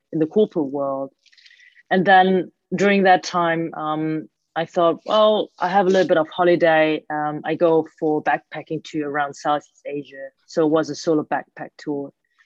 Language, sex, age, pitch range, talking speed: English, female, 30-49, 155-205 Hz, 175 wpm